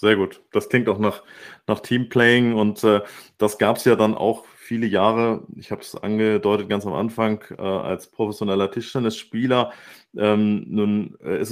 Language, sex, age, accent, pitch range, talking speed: German, male, 30-49, German, 105-120 Hz, 165 wpm